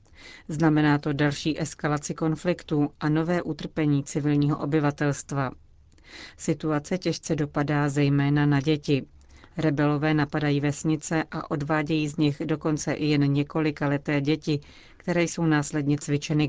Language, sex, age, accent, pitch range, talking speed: Czech, female, 40-59, native, 145-160 Hz, 120 wpm